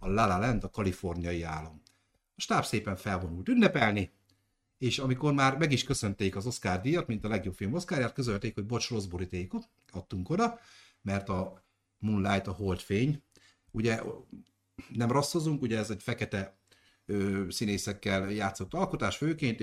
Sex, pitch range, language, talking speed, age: male, 95-130 Hz, Hungarian, 150 wpm, 50-69